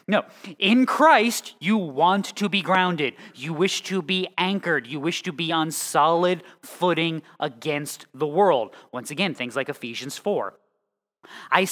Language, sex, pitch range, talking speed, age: English, male, 150-205 Hz, 155 wpm, 20-39